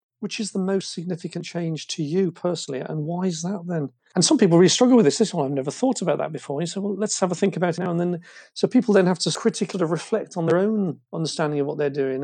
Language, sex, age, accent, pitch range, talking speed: English, male, 40-59, British, 155-195 Hz, 280 wpm